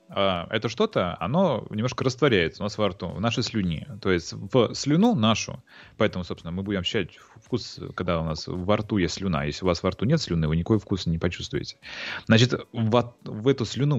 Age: 30-49